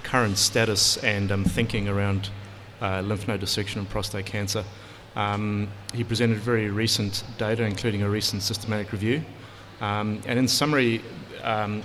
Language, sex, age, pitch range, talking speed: English, male, 30-49, 105-115 Hz, 145 wpm